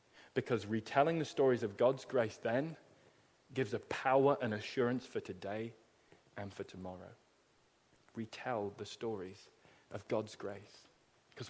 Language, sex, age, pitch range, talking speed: English, male, 20-39, 105-150 Hz, 130 wpm